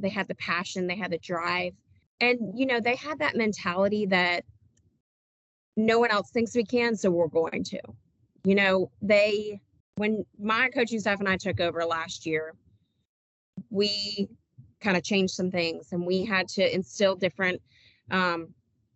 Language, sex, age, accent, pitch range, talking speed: English, female, 20-39, American, 175-210 Hz, 165 wpm